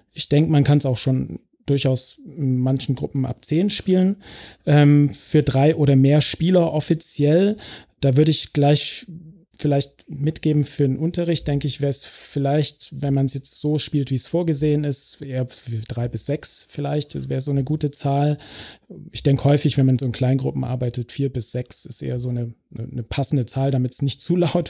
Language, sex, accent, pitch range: German, male, German, 125-150 Hz